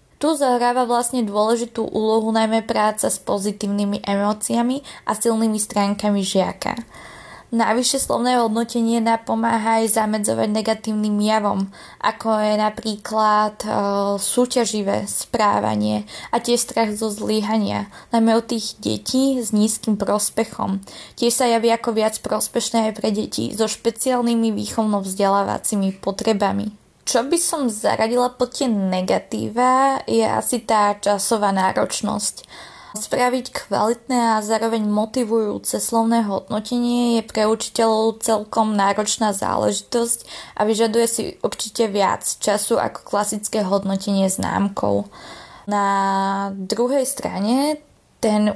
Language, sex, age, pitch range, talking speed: Slovak, female, 20-39, 205-230 Hz, 115 wpm